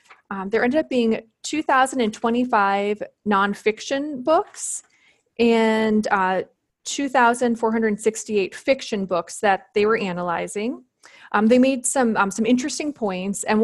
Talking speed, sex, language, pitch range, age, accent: 115 wpm, female, English, 195-235 Hz, 20-39, American